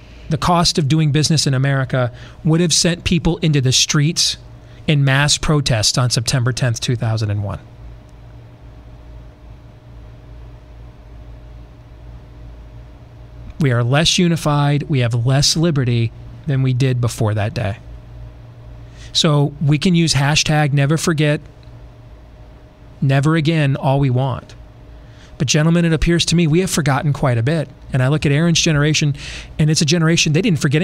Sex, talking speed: male, 140 wpm